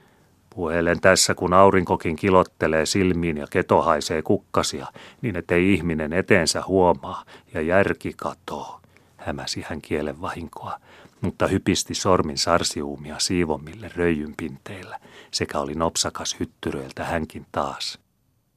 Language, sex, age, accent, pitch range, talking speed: Finnish, male, 40-59, native, 75-90 Hz, 105 wpm